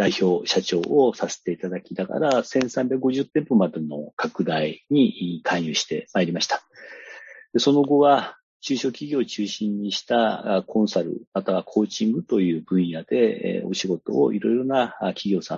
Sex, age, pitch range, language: male, 40-59, 85-135 Hz, Japanese